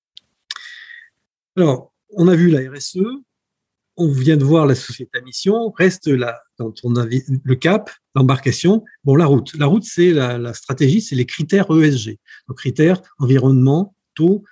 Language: French